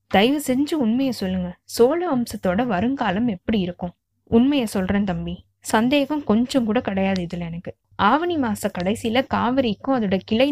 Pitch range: 190-260 Hz